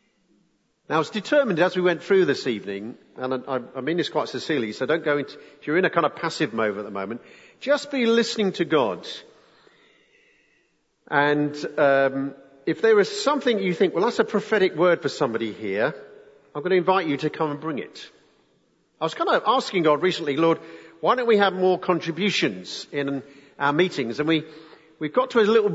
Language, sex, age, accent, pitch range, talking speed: English, male, 50-69, British, 140-200 Hz, 200 wpm